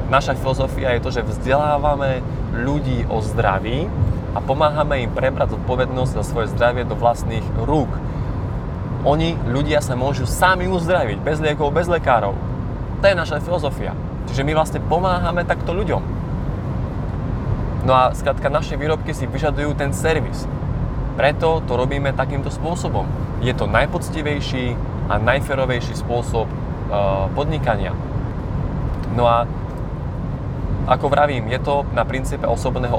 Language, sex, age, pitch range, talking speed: Slovak, male, 20-39, 115-140 Hz, 130 wpm